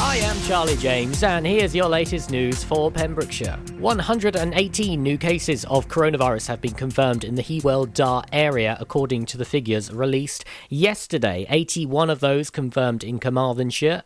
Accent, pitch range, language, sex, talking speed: British, 120-155 Hz, English, male, 150 wpm